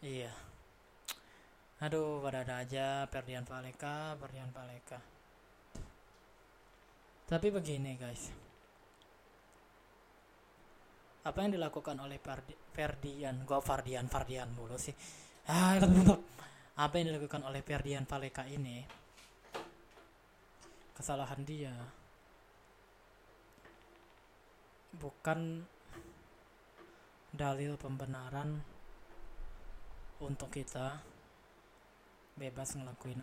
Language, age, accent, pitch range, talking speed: Indonesian, 20-39, native, 130-150 Hz, 70 wpm